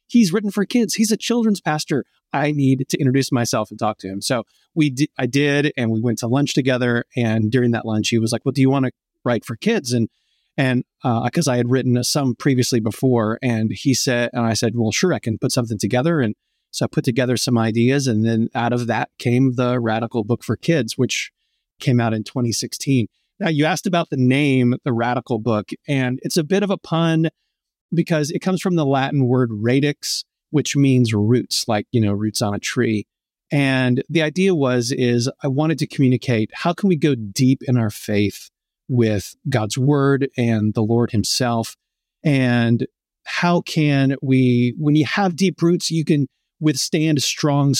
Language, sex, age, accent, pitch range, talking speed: English, male, 30-49, American, 120-150 Hz, 200 wpm